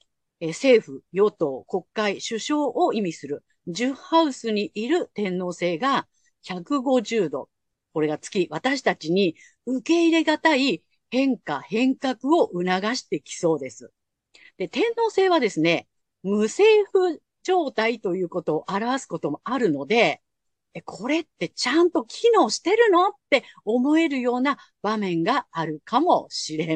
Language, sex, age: Japanese, female, 50-69